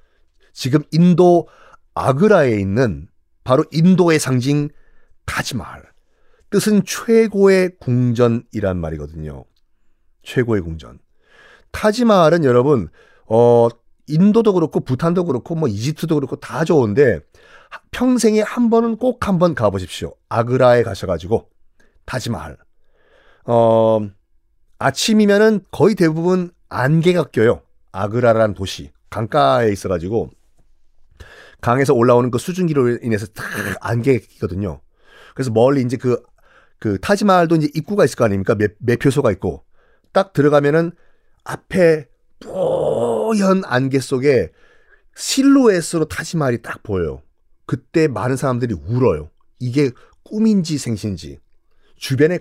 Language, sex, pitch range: Korean, male, 115-190 Hz